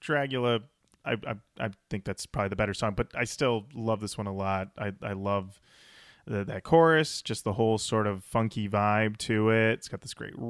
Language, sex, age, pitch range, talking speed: English, male, 30-49, 110-165 Hz, 210 wpm